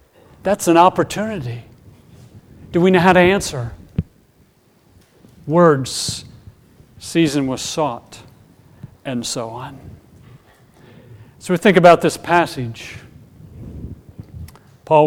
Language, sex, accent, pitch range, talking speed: English, male, American, 120-170 Hz, 90 wpm